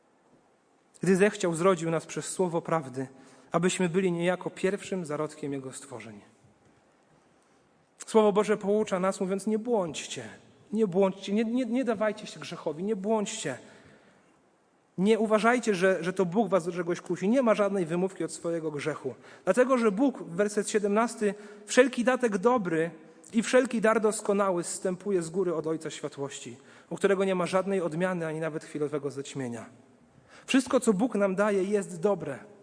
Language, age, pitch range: Polish, 40-59, 180-235 Hz